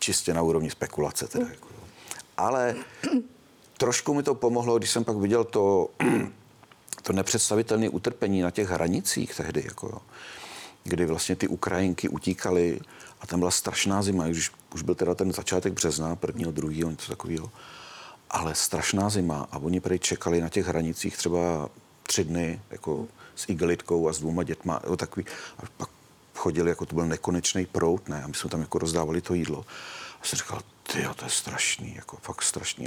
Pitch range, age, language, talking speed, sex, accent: 80-100 Hz, 40-59, Czech, 165 wpm, male, native